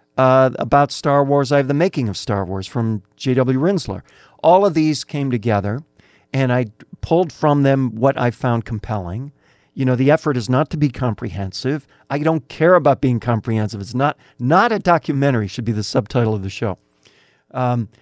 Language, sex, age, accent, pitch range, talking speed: English, male, 50-69, American, 110-140 Hz, 185 wpm